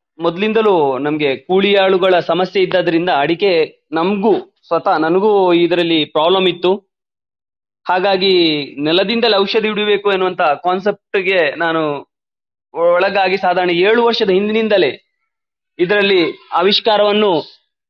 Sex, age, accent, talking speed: male, 20-39, Indian, 90 wpm